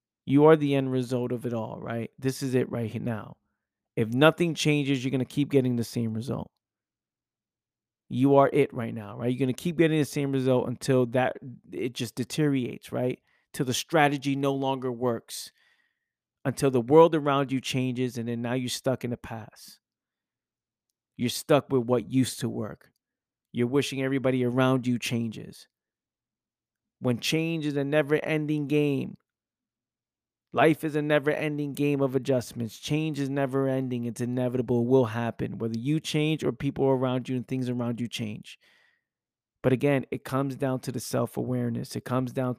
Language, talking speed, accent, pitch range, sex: English, 175 wpm, American, 120-140 Hz, male